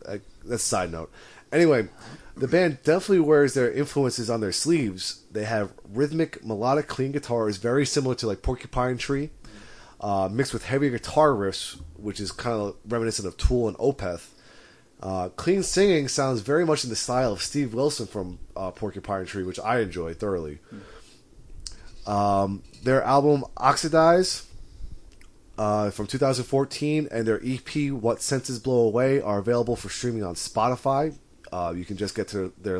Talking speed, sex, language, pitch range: 165 wpm, male, English, 100-140 Hz